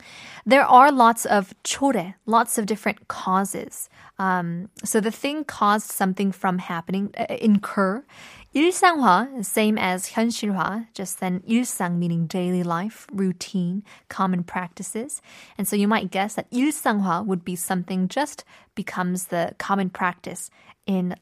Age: 10-29